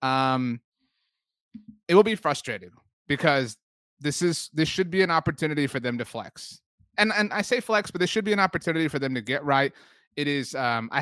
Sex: male